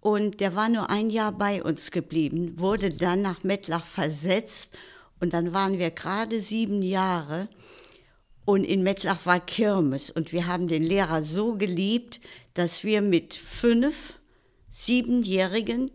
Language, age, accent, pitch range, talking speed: German, 60-79, German, 155-200 Hz, 145 wpm